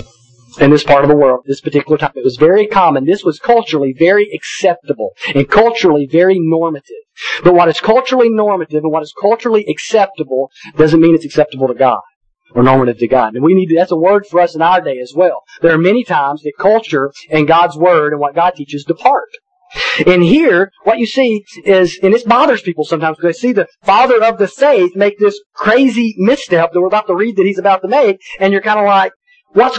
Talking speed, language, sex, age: 220 wpm, English, male, 40-59